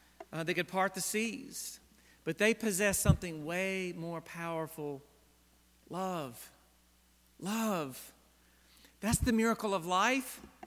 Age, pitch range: 50-69, 140-200 Hz